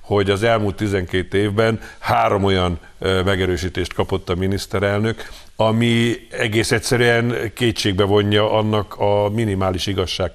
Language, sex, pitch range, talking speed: Hungarian, male, 95-110 Hz, 120 wpm